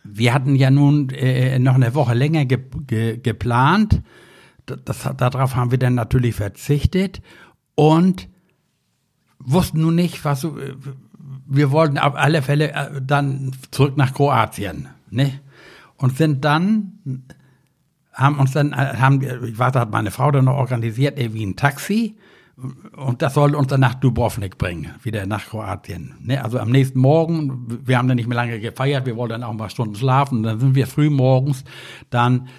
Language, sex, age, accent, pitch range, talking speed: German, male, 60-79, German, 125-145 Hz, 165 wpm